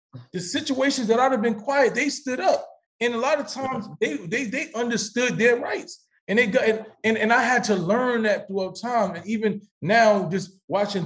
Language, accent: English, American